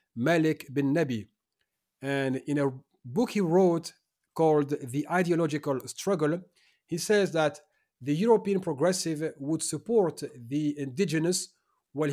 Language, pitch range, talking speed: Dutch, 140-180 Hz, 120 wpm